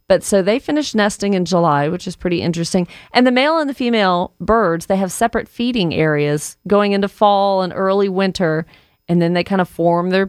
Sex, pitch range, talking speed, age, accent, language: female, 170-200 Hz, 210 wpm, 40-59, American, English